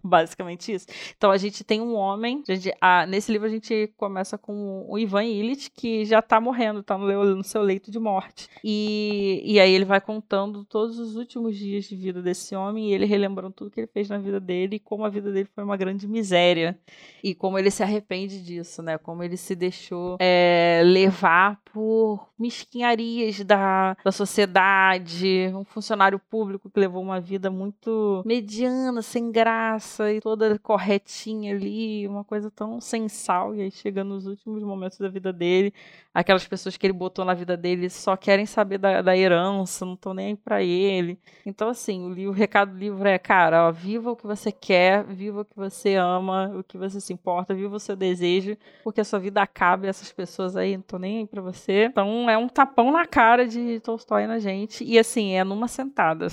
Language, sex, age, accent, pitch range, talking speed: Portuguese, female, 20-39, Brazilian, 190-215 Hz, 200 wpm